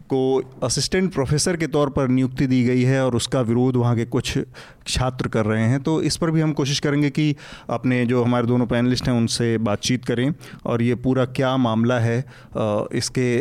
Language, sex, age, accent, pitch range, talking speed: Hindi, male, 30-49, native, 125-150 Hz, 195 wpm